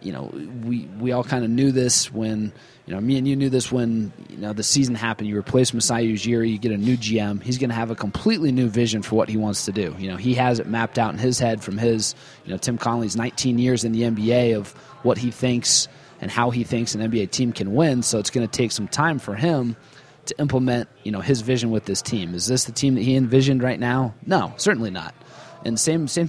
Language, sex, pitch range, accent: English, male, 110-130 Hz, American